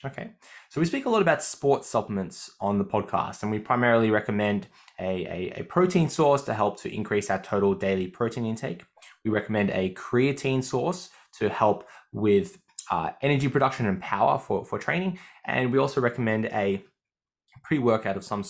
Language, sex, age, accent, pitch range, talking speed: English, male, 10-29, Australian, 100-130 Hz, 175 wpm